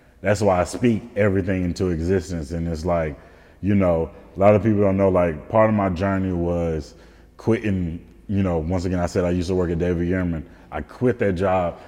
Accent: American